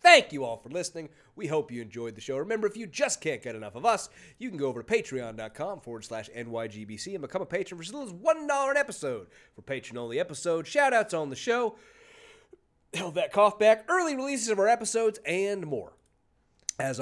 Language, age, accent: English, 30-49, American